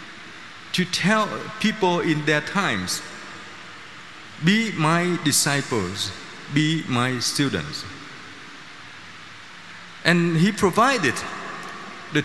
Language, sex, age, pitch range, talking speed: Vietnamese, male, 50-69, 130-175 Hz, 80 wpm